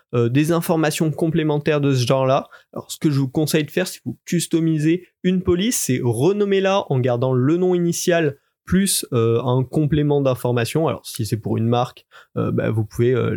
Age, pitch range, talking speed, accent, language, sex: 20-39, 120-155 Hz, 200 wpm, French, French, male